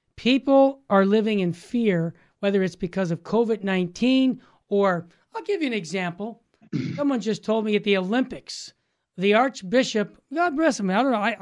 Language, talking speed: English, 160 wpm